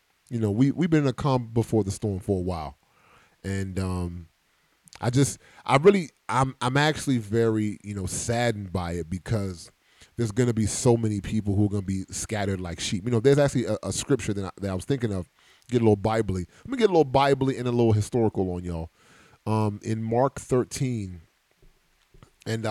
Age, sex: 30-49, male